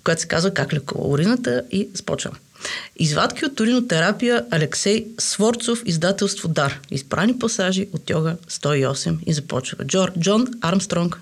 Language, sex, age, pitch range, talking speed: Bulgarian, female, 30-49, 180-230 Hz, 135 wpm